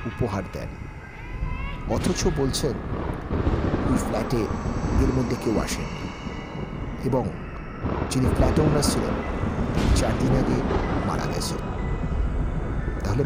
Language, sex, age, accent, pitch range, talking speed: Bengali, male, 50-69, native, 90-125 Hz, 85 wpm